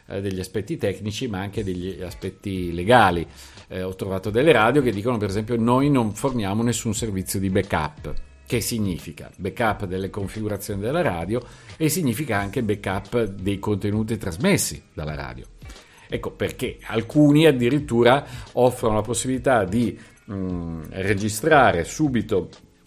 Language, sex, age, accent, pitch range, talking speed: Italian, male, 50-69, native, 95-125 Hz, 130 wpm